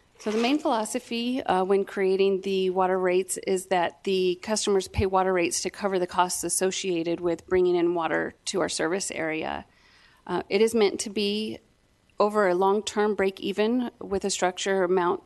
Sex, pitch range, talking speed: female, 180-215 Hz, 175 wpm